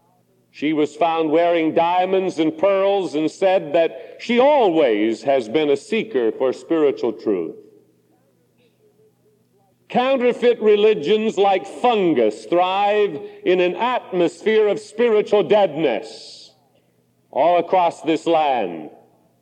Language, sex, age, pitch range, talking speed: English, male, 50-69, 175-230 Hz, 105 wpm